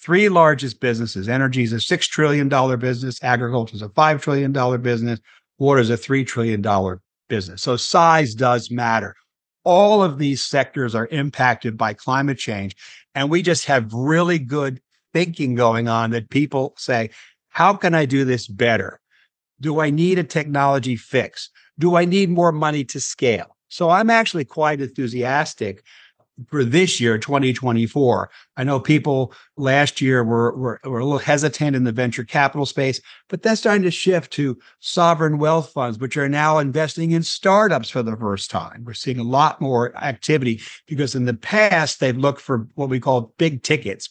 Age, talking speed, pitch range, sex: 50-69, 175 wpm, 120-150 Hz, male